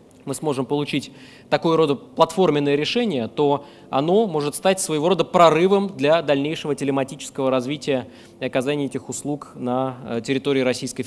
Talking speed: 135 wpm